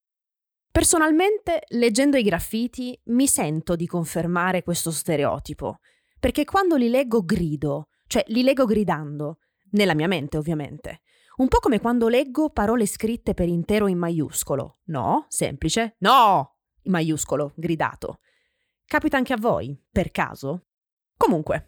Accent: native